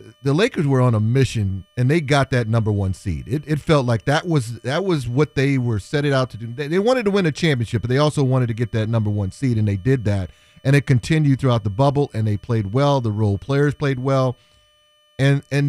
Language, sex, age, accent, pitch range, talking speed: English, male, 30-49, American, 125-160 Hz, 255 wpm